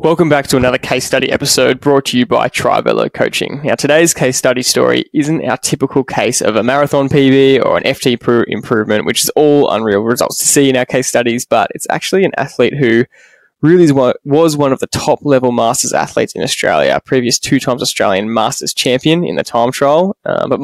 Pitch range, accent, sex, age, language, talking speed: 120-145 Hz, Australian, male, 10-29, English, 200 wpm